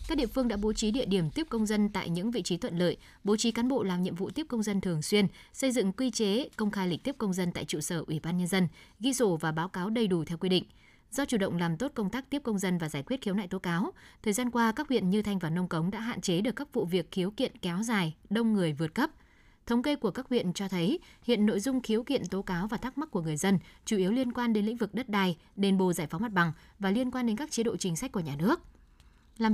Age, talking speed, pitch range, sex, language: 20-39, 295 wpm, 185-235 Hz, female, Vietnamese